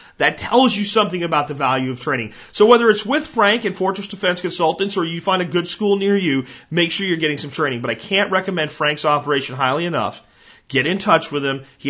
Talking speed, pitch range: 230 wpm, 130-180 Hz